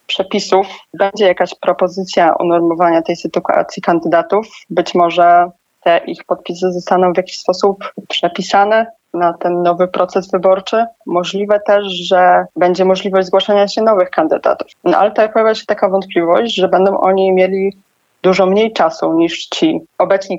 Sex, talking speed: female, 145 wpm